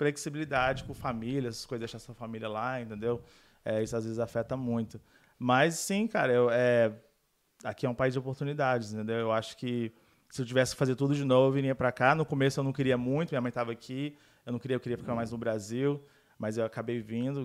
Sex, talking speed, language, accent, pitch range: male, 225 wpm, Portuguese, Brazilian, 115-130 Hz